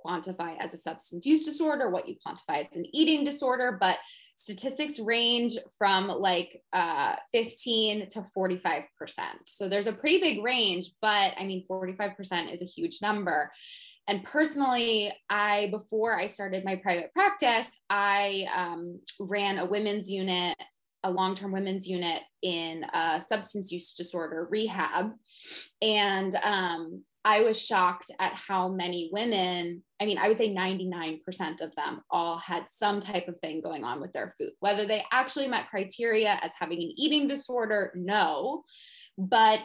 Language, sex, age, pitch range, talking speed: English, female, 20-39, 185-240 Hz, 150 wpm